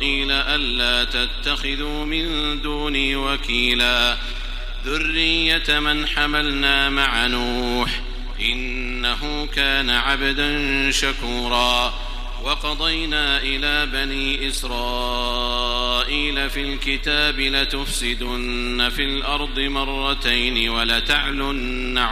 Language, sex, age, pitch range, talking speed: Arabic, male, 50-69, 125-150 Hz, 70 wpm